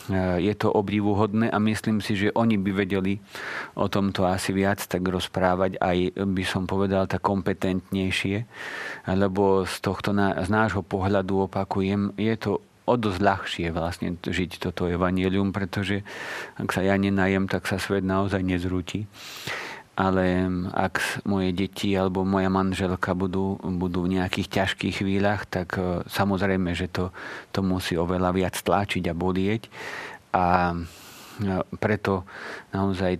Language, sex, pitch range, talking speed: Slovak, male, 95-105 Hz, 135 wpm